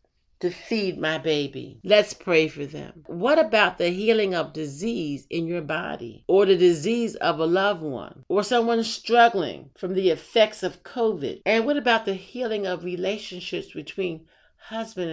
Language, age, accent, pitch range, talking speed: English, 50-69, American, 160-225 Hz, 165 wpm